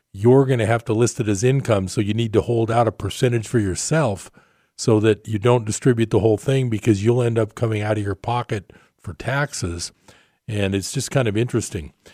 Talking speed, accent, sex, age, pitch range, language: 215 wpm, American, male, 50-69, 100-125 Hz, English